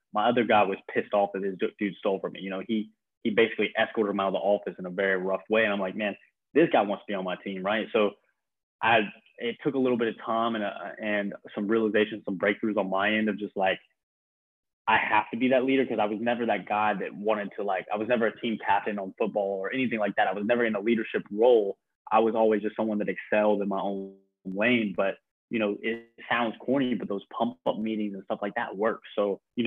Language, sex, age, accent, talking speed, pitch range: English, male, 20-39, American, 255 wpm, 100-120 Hz